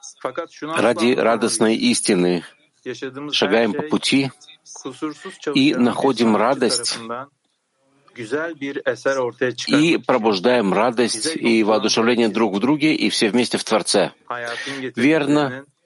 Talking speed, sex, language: 85 wpm, male, Russian